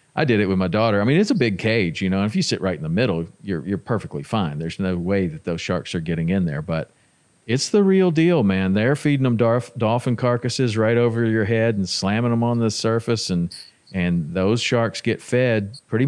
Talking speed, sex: 245 wpm, male